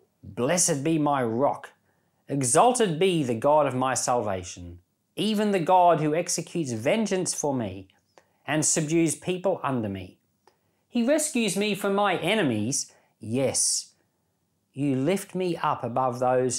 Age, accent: 40-59, Australian